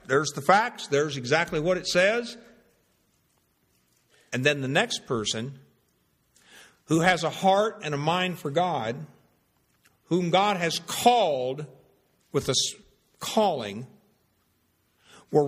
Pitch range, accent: 140-195 Hz, American